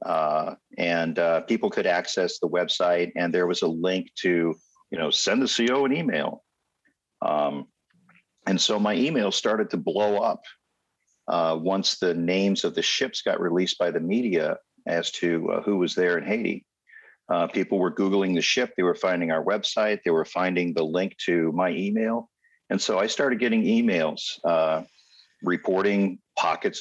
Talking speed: 175 wpm